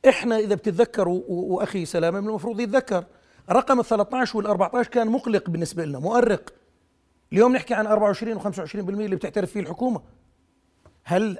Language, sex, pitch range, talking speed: Arabic, male, 175-225 Hz, 145 wpm